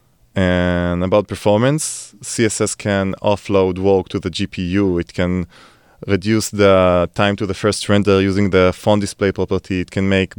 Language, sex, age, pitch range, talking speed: English, male, 20-39, 95-110 Hz, 155 wpm